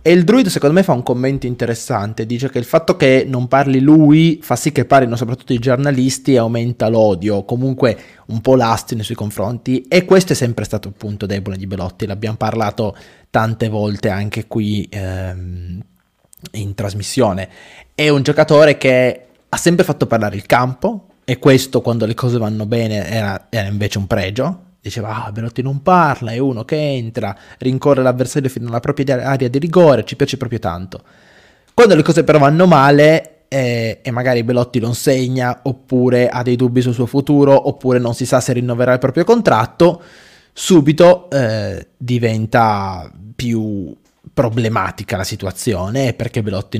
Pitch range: 110-140 Hz